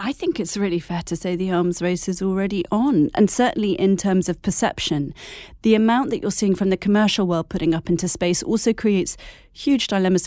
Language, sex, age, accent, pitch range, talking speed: English, female, 30-49, British, 165-195 Hz, 210 wpm